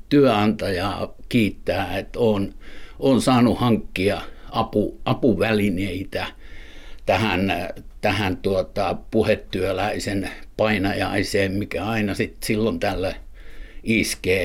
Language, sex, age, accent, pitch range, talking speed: Finnish, male, 60-79, native, 95-110 Hz, 80 wpm